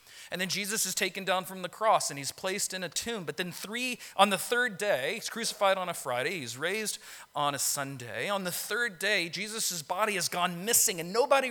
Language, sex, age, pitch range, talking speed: English, male, 40-59, 165-230 Hz, 225 wpm